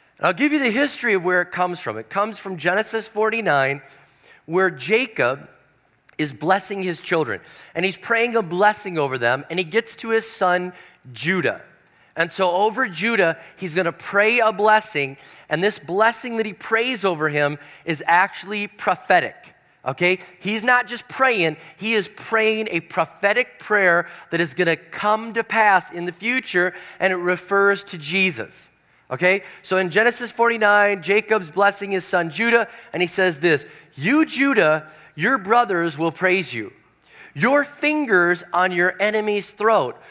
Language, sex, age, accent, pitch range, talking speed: English, male, 40-59, American, 170-220 Hz, 165 wpm